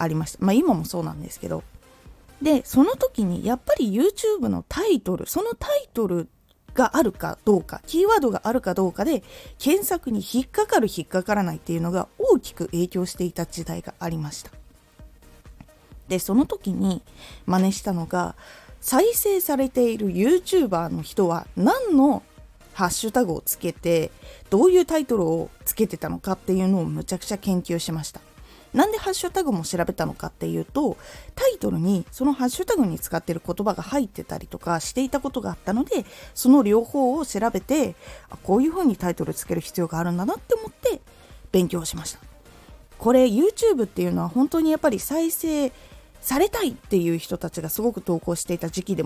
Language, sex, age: Japanese, female, 20-39